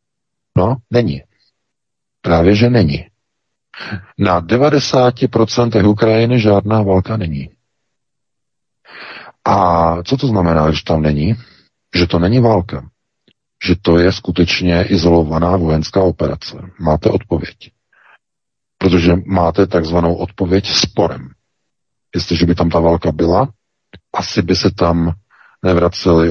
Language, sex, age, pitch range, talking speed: Czech, male, 40-59, 85-100 Hz, 105 wpm